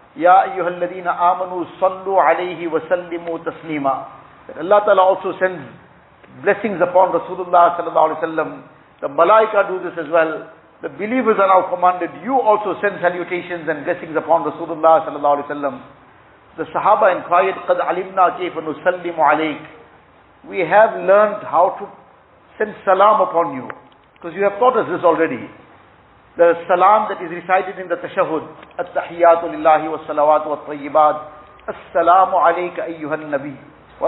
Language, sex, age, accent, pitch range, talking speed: English, male, 50-69, Indian, 160-195 Hz, 145 wpm